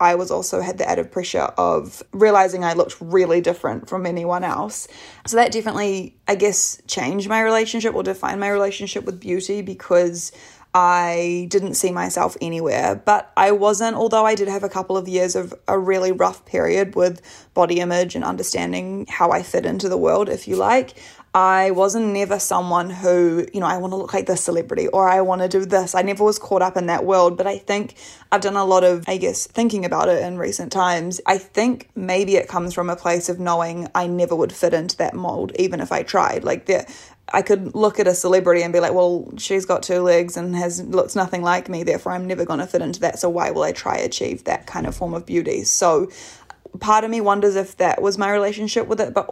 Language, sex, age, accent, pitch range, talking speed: English, female, 20-39, Australian, 175-200 Hz, 225 wpm